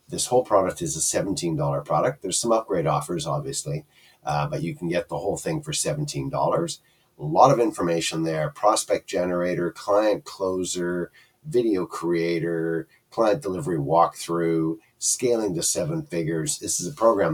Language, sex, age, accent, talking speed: English, male, 50-69, American, 150 wpm